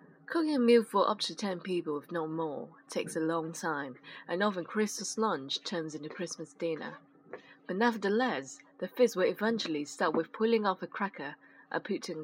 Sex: female